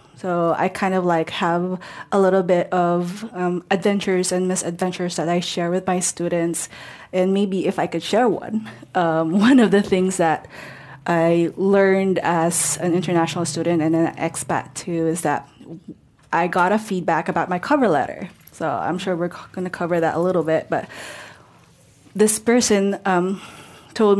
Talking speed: 170 wpm